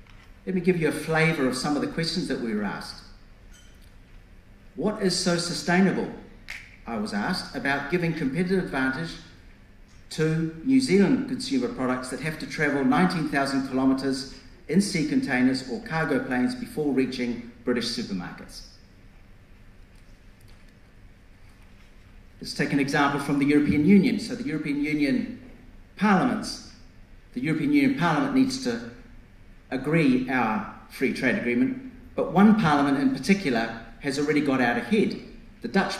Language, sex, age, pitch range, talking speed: English, male, 50-69, 120-190 Hz, 135 wpm